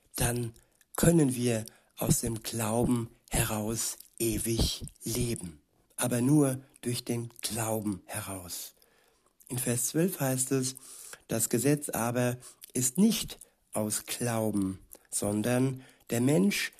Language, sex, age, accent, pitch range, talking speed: German, male, 60-79, German, 115-140 Hz, 105 wpm